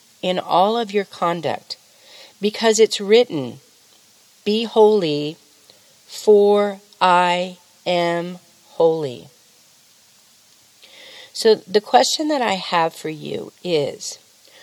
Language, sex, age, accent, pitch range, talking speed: English, female, 40-59, American, 175-230 Hz, 95 wpm